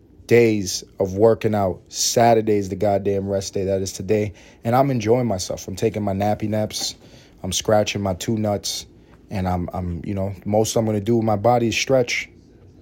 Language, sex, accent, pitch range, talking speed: English, male, American, 95-115 Hz, 195 wpm